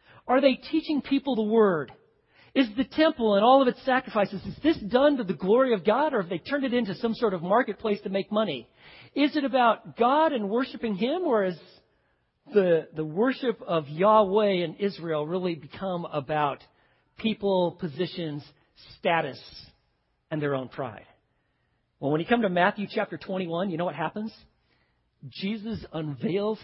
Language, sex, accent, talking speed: English, male, American, 170 wpm